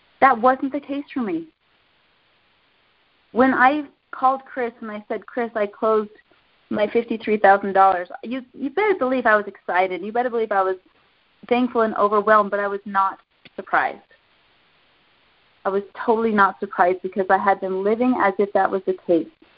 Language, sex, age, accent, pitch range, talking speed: English, female, 30-49, American, 195-255 Hz, 160 wpm